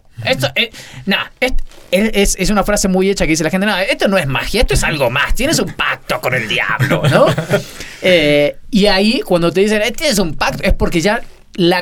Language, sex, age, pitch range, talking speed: Spanish, male, 30-49, 150-200 Hz, 220 wpm